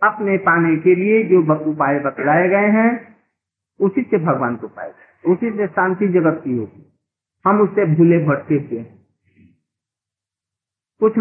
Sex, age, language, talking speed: male, 50-69, Hindi, 105 wpm